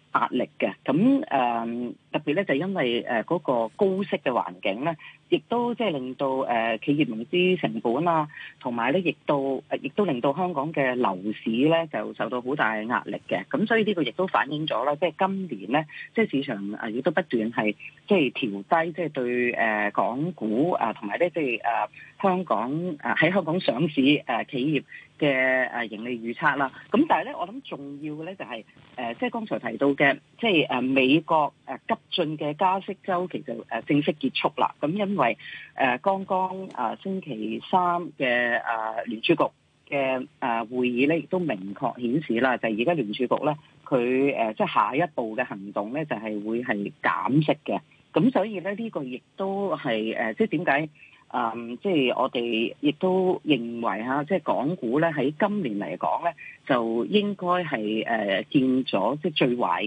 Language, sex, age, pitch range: Chinese, female, 30-49, 120-185 Hz